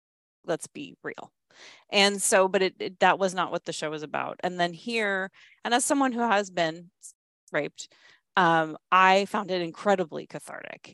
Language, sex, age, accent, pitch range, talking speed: English, female, 30-49, American, 175-220 Hz, 175 wpm